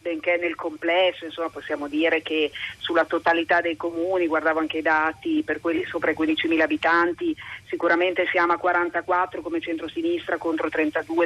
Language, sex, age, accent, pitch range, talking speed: Italian, female, 40-59, native, 165-200 Hz, 155 wpm